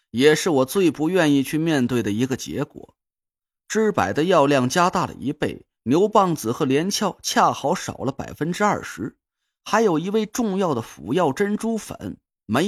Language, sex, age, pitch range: Chinese, male, 30-49, 160-220 Hz